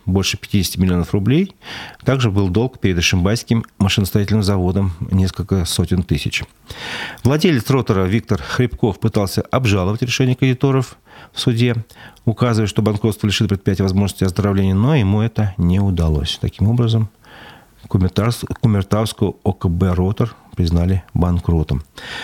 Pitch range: 95-115 Hz